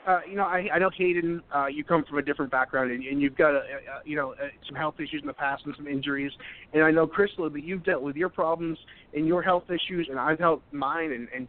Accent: American